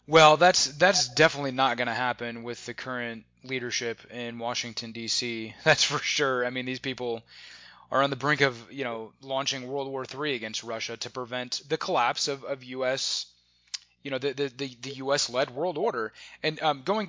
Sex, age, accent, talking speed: male, 20-39, American, 185 wpm